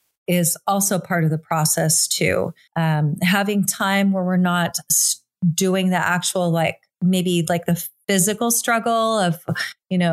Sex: female